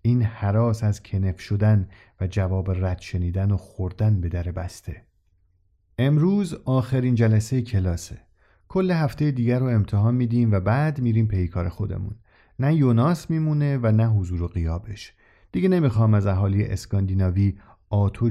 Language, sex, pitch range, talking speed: Persian, male, 95-120 Hz, 145 wpm